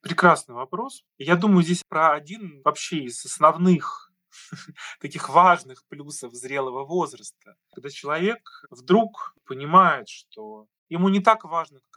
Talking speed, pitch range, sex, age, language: 125 wpm, 140-190 Hz, male, 20-39, Russian